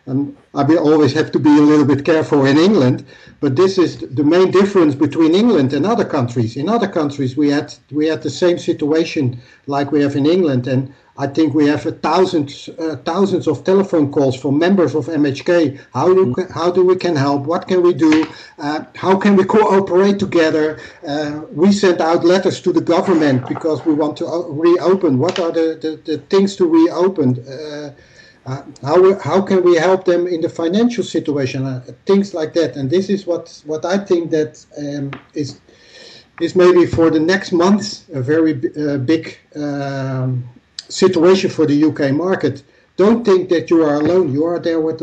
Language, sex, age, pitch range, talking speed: English, male, 60-79, 145-175 Hz, 195 wpm